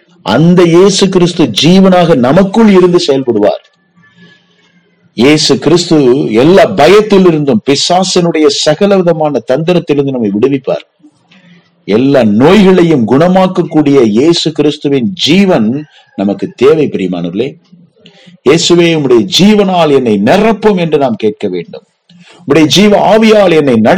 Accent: native